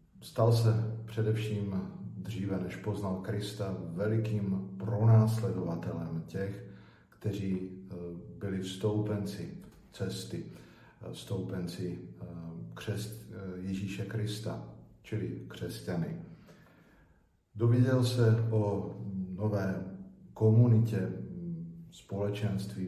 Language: Slovak